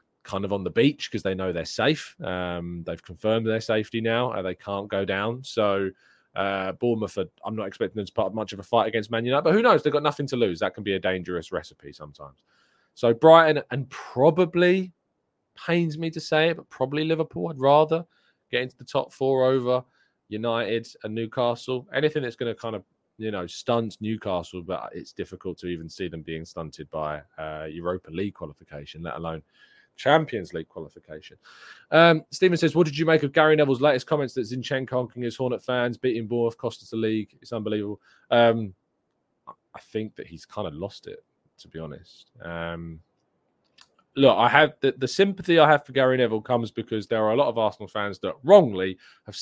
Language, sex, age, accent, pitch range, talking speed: English, male, 20-39, British, 95-130 Hz, 205 wpm